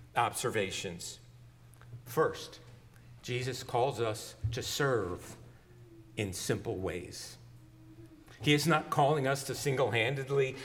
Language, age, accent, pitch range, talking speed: English, 50-69, American, 115-145 Hz, 95 wpm